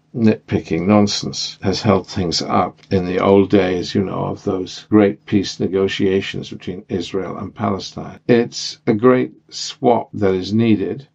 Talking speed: 150 wpm